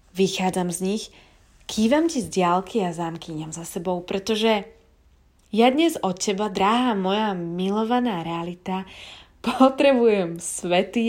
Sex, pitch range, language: female, 175-245 Hz, Slovak